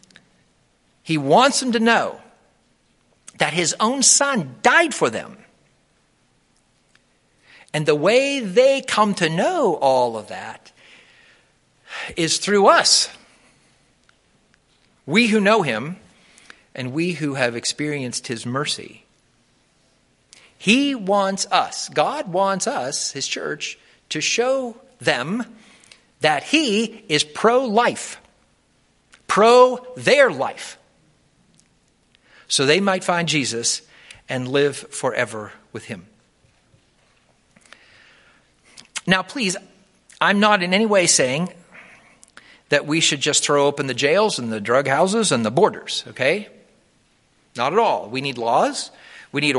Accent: American